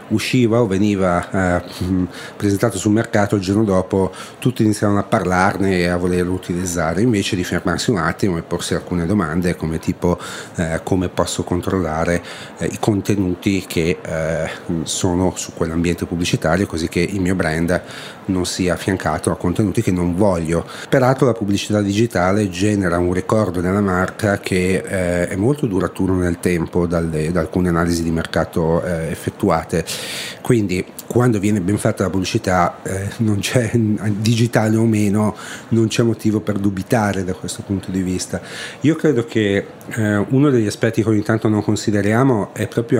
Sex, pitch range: male, 90-105 Hz